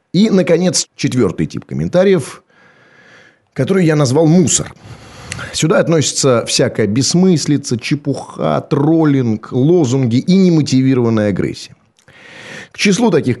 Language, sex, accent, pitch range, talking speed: Russian, male, native, 105-150 Hz, 100 wpm